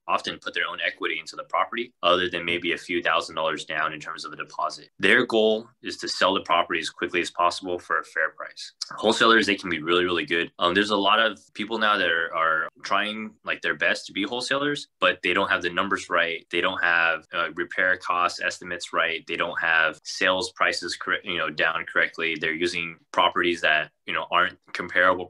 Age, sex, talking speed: 20-39, male, 225 wpm